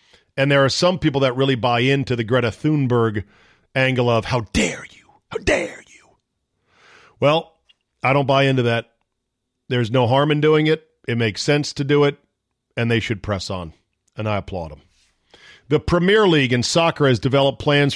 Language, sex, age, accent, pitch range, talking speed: English, male, 40-59, American, 115-150 Hz, 185 wpm